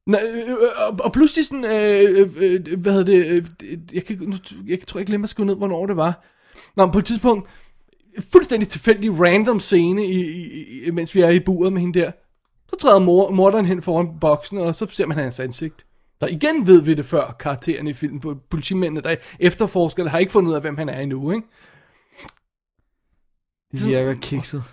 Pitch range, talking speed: 155-205 Hz, 180 wpm